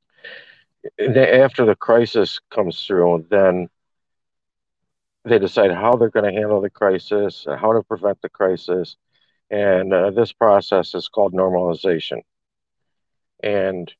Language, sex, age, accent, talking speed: English, male, 50-69, American, 120 wpm